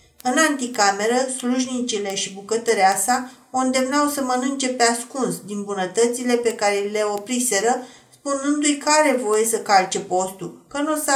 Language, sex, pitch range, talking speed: Romanian, female, 205-255 Hz, 145 wpm